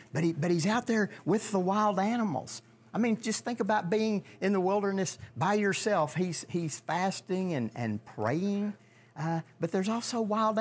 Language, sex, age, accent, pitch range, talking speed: English, male, 50-69, American, 120-180 Hz, 180 wpm